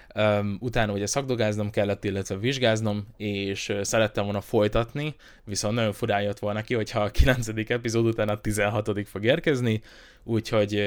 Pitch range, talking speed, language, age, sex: 100-110 Hz, 145 wpm, Hungarian, 20-39, male